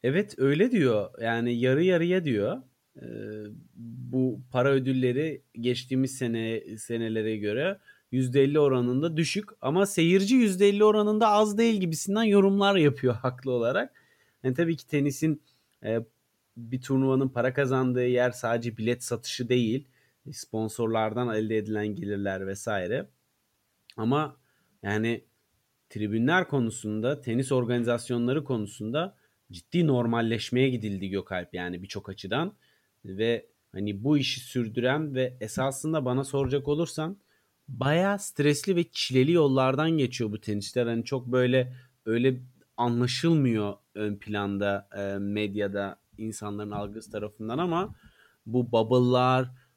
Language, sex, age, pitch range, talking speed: Turkish, male, 30-49, 110-140 Hz, 115 wpm